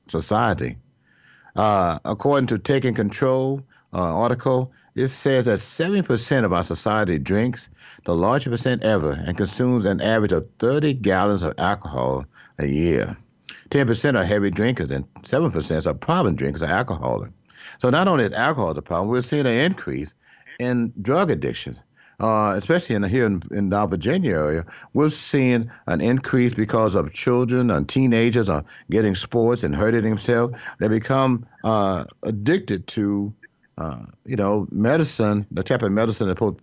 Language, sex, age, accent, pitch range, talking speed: English, male, 60-79, American, 100-135 Hz, 155 wpm